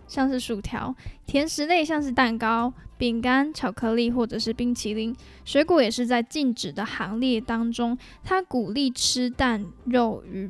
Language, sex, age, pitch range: Chinese, female, 10-29, 235-280 Hz